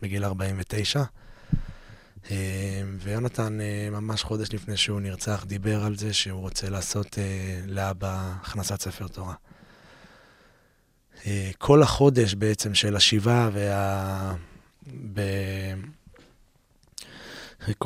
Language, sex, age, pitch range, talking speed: Hebrew, male, 20-39, 100-115 Hz, 80 wpm